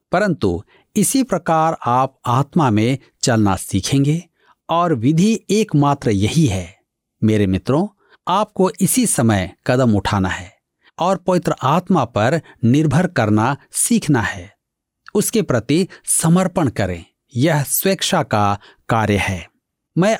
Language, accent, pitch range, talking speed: Hindi, native, 110-175 Hz, 115 wpm